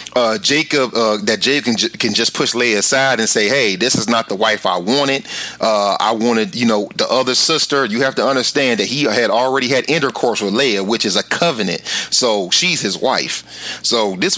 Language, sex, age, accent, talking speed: English, male, 30-49, American, 205 wpm